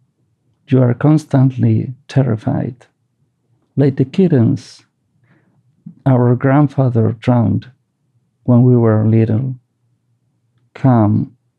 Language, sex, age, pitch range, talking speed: English, male, 50-69, 115-140 Hz, 80 wpm